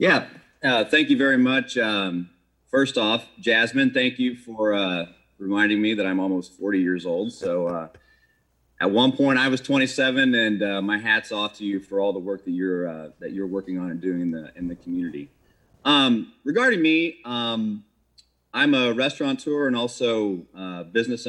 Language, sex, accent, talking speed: English, male, American, 185 wpm